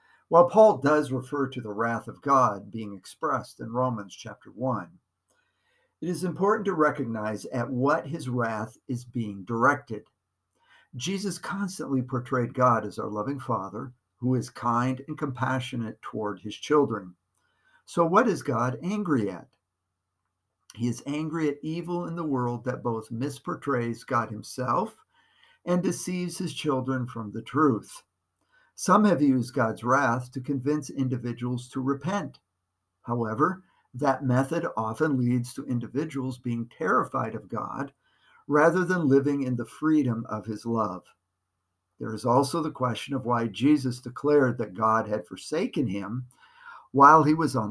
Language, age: English, 50-69